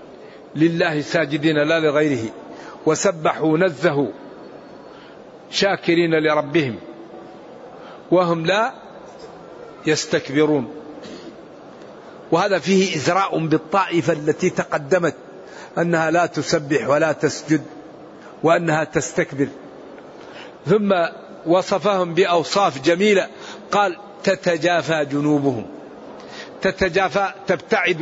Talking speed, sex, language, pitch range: 70 wpm, male, Arabic, 160-195 Hz